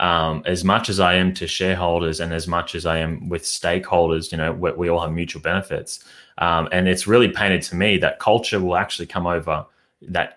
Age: 20-39